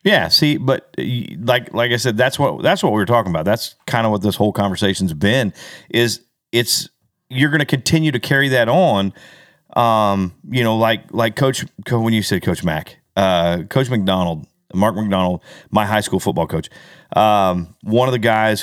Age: 40-59